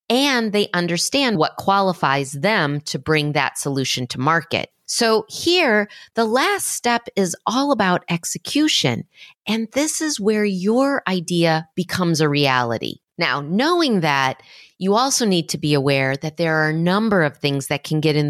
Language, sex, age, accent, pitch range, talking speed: English, female, 30-49, American, 155-220 Hz, 165 wpm